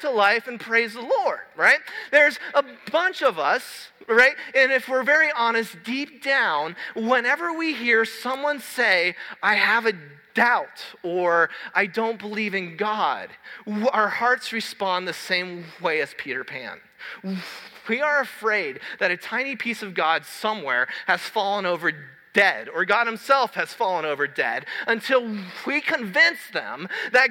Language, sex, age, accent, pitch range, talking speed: English, male, 30-49, American, 215-290 Hz, 155 wpm